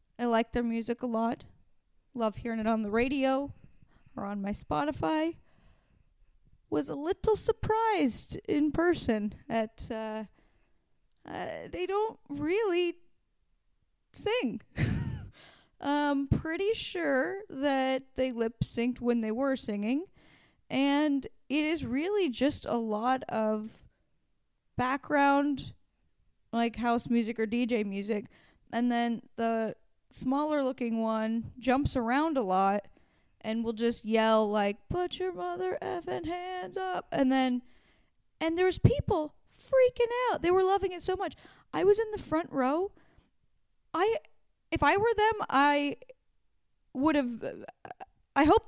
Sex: female